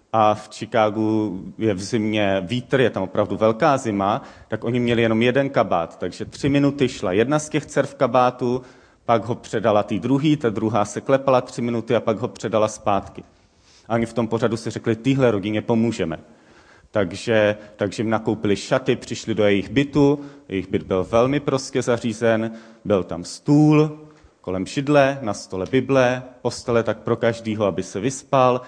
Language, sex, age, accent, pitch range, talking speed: Czech, male, 30-49, native, 100-125 Hz, 175 wpm